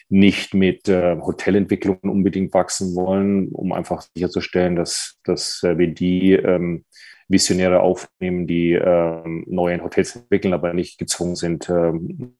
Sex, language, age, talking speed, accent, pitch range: male, German, 30-49, 130 wpm, German, 85-95 Hz